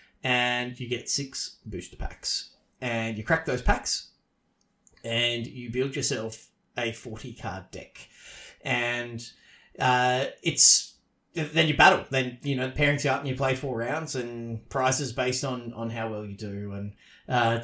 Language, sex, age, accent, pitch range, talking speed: English, male, 30-49, Australian, 115-130 Hz, 160 wpm